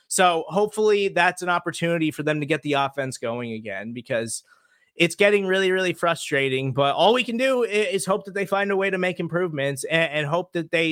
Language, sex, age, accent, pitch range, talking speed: English, male, 30-49, American, 145-180 Hz, 215 wpm